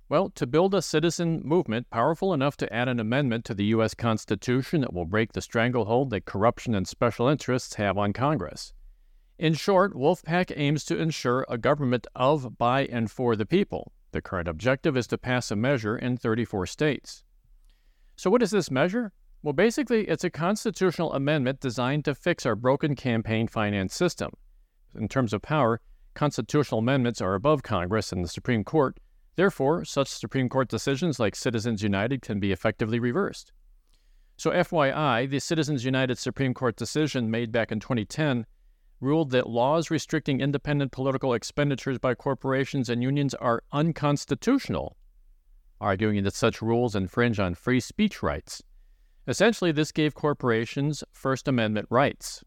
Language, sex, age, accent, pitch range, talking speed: English, male, 50-69, American, 110-150 Hz, 160 wpm